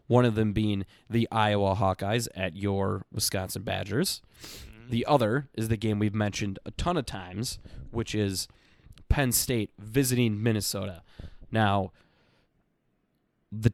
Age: 20-39